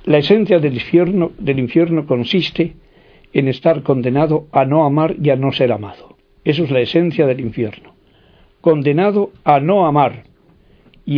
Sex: male